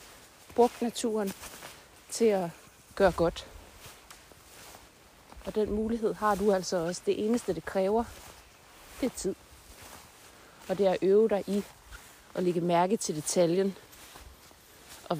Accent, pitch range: native, 170-210 Hz